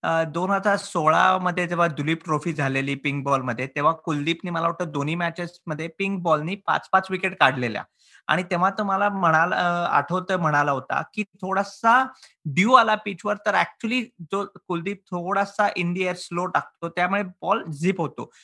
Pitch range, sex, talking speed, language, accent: 150-195 Hz, male, 155 wpm, Marathi, native